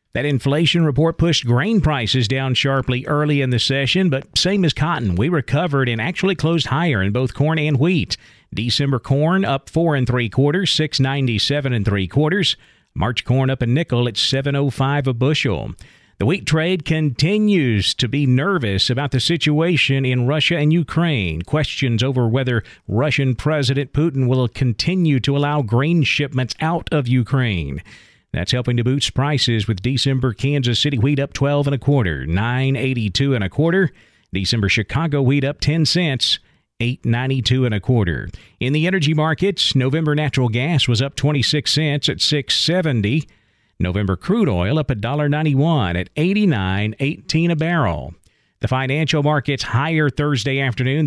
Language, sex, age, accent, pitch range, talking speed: English, male, 50-69, American, 125-155 Hz, 160 wpm